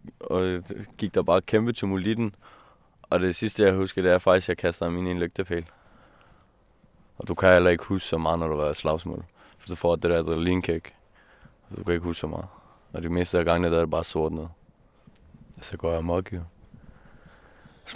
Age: 20-39